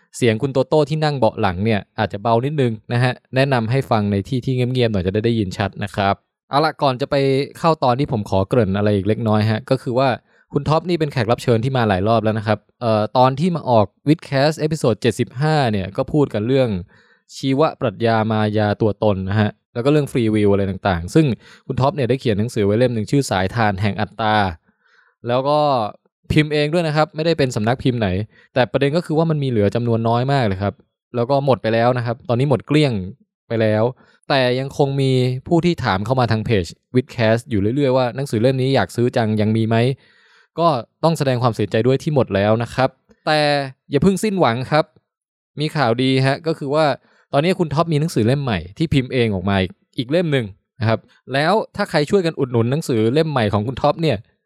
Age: 20-39